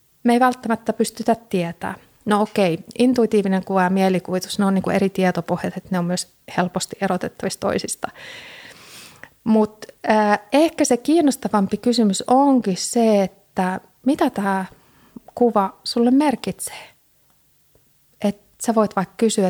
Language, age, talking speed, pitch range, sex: Finnish, 30-49, 135 wpm, 185-230 Hz, female